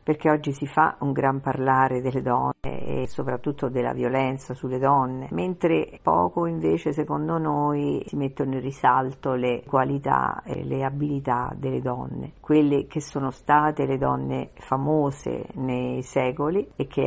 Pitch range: 130-150 Hz